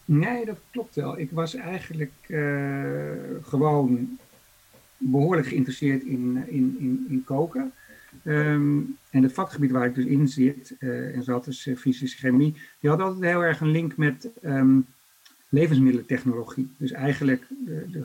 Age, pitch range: 50-69, 130-160 Hz